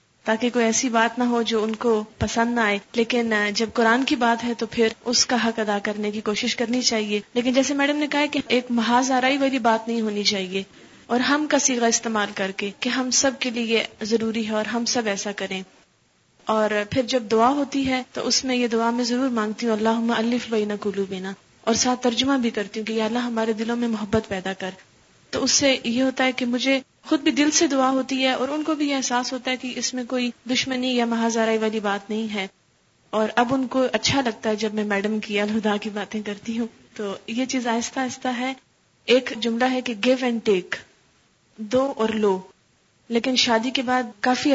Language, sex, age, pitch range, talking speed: Urdu, female, 30-49, 215-255 Hz, 225 wpm